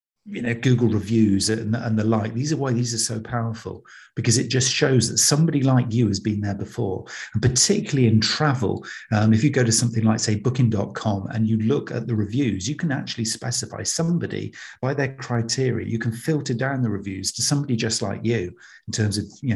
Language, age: English, 50-69